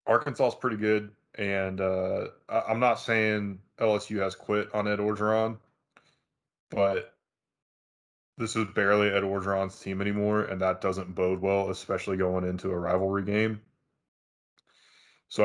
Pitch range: 95-105 Hz